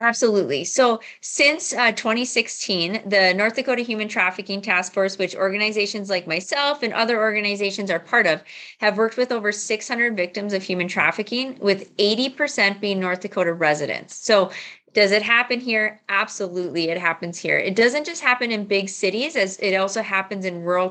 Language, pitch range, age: English, 180-225 Hz, 30-49